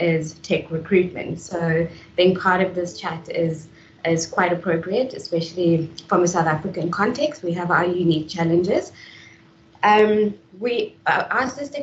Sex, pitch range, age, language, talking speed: female, 165-200 Hz, 20-39, English, 140 wpm